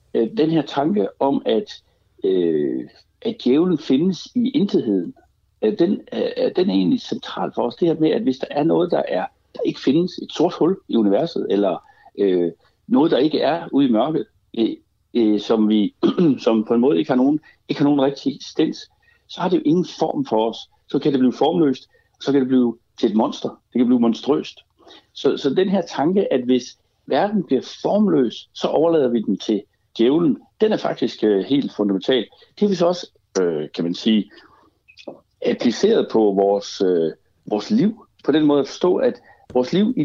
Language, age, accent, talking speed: Danish, 60-79, native, 190 wpm